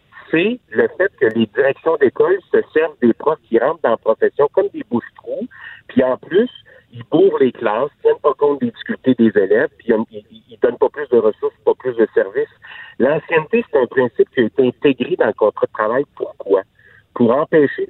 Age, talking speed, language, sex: 60-79, 210 wpm, French, male